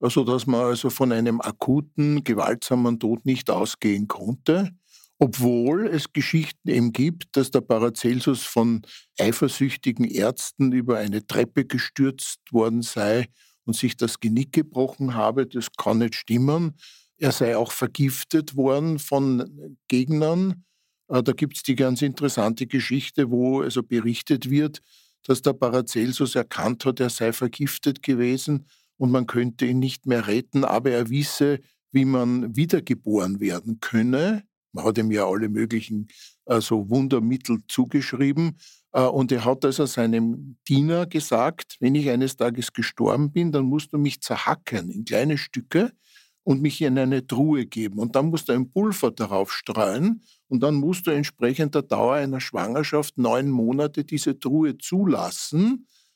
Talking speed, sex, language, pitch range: 150 wpm, male, German, 120-145 Hz